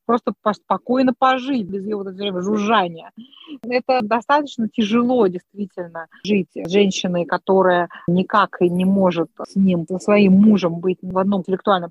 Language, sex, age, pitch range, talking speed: Russian, female, 30-49, 185-235 Hz, 135 wpm